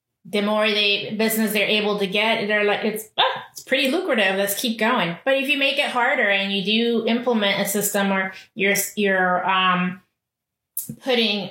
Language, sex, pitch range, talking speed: English, female, 180-215 Hz, 185 wpm